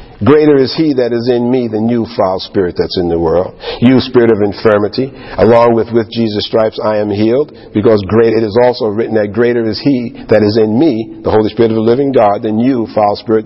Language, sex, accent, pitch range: English, male, American, 115-140 Hz